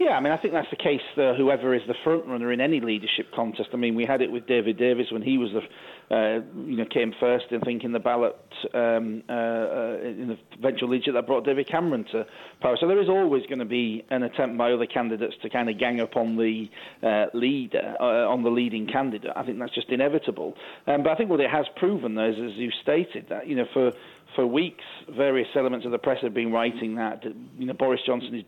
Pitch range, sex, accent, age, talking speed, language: 115-130 Hz, male, British, 40-59, 250 wpm, English